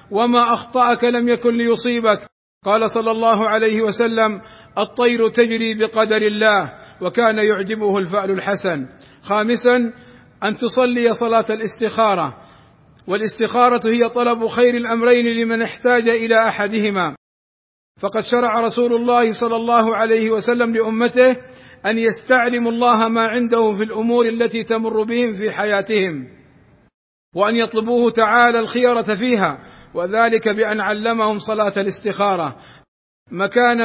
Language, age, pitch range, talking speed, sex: Arabic, 50-69, 200-230 Hz, 115 wpm, male